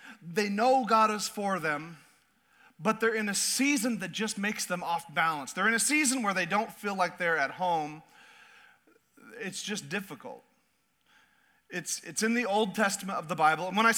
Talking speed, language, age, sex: 190 wpm, English, 40-59, male